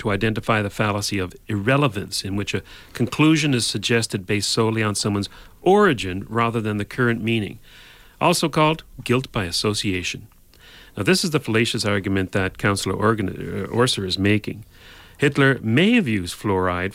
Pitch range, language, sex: 95-135 Hz, English, male